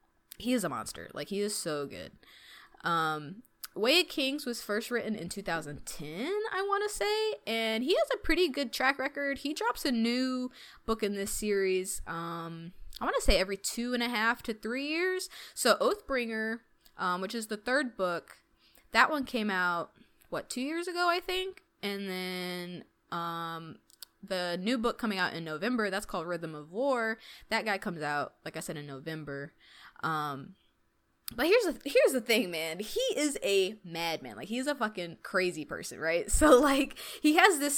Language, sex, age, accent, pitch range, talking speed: English, female, 20-39, American, 185-280 Hz, 185 wpm